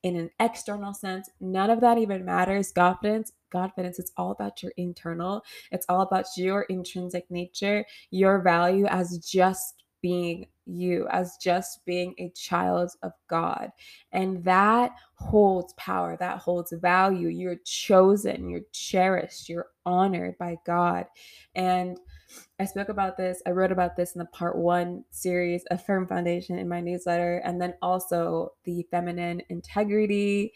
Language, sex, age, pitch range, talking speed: English, female, 20-39, 175-190 Hz, 145 wpm